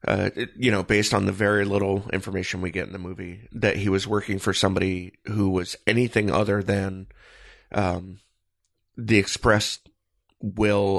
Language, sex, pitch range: English, male, 95-120 Hz